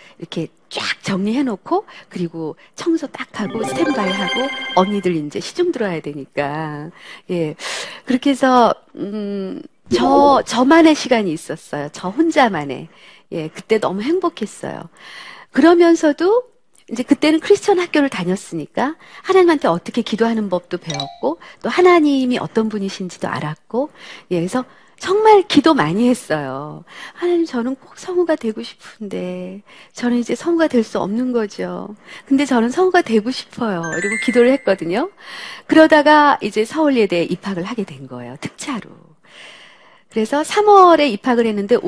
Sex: female